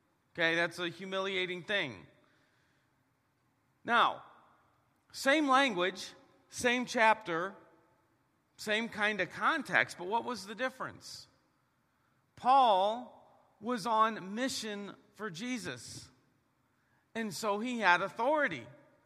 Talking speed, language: 95 wpm, English